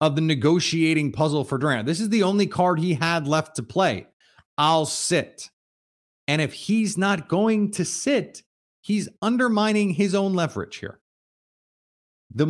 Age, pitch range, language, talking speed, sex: 30-49, 135-190 Hz, English, 155 wpm, male